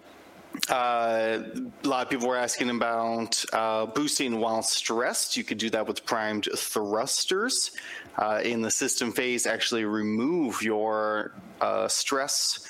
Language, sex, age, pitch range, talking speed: English, male, 30-49, 105-125 Hz, 135 wpm